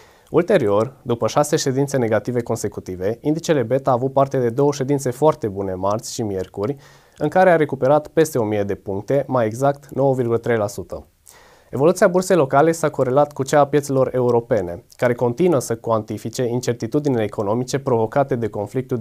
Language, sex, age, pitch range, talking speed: Romanian, male, 20-39, 115-145 Hz, 155 wpm